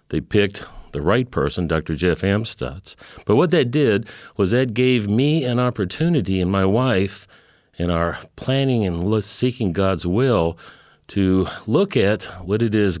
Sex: male